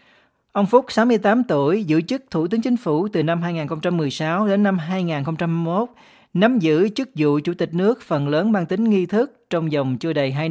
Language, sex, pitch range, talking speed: Vietnamese, male, 155-210 Hz, 195 wpm